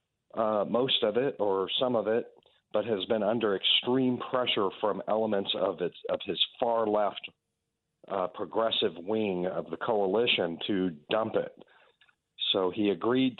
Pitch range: 100-120 Hz